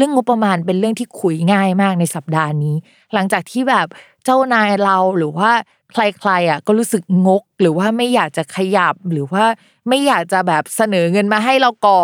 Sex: female